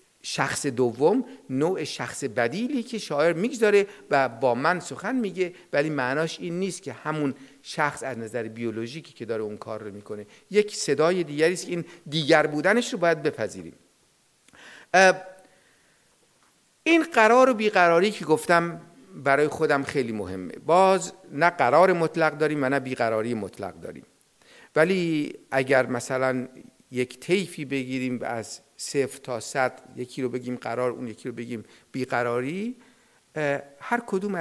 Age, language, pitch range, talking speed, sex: 50-69, Persian, 125-170 Hz, 140 wpm, male